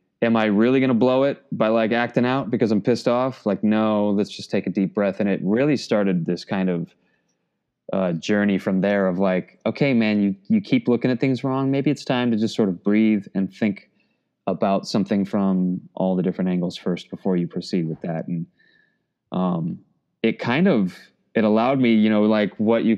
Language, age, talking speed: English, 20-39, 210 wpm